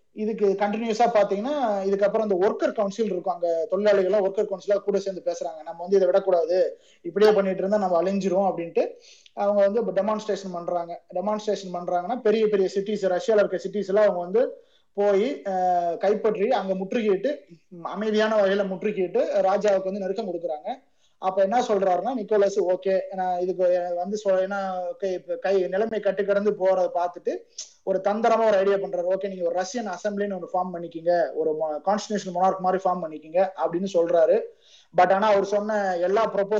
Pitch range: 185-215 Hz